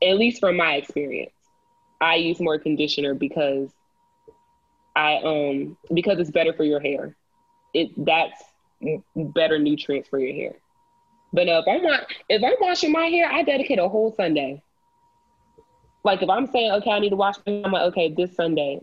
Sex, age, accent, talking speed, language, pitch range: female, 20-39, American, 170 wpm, English, 155-210 Hz